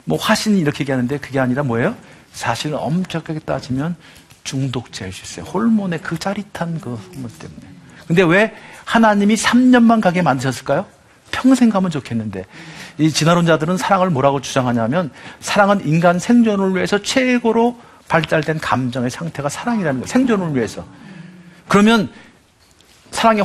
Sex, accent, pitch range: male, native, 130-190 Hz